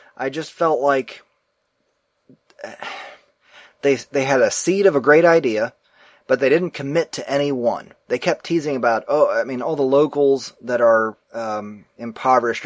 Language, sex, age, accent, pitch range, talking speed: English, male, 30-49, American, 115-155 Hz, 160 wpm